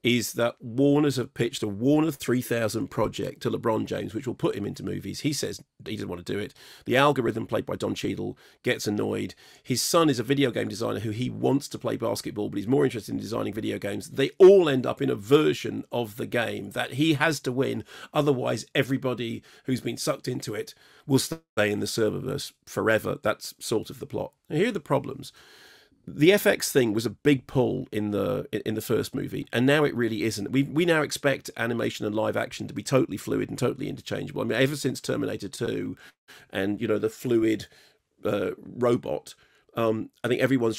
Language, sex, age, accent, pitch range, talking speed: English, male, 40-59, British, 115-140 Hz, 210 wpm